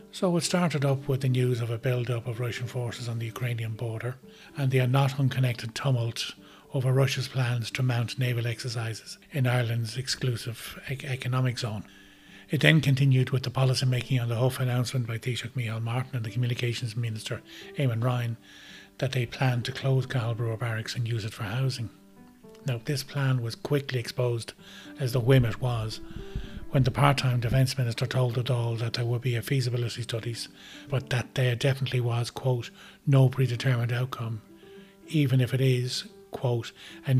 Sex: male